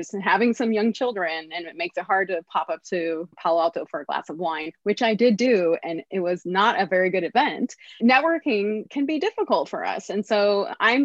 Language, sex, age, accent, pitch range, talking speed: English, female, 20-39, American, 175-230 Hz, 230 wpm